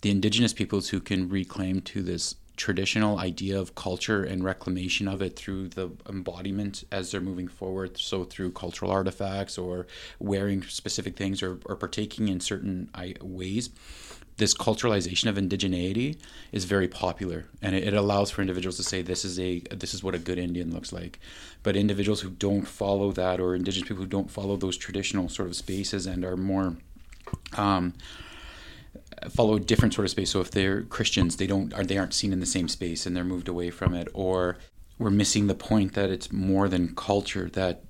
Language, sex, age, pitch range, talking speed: English, male, 30-49, 90-100 Hz, 195 wpm